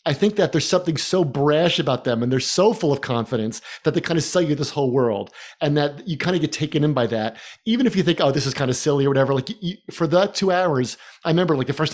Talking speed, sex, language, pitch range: 285 wpm, male, English, 135-170 Hz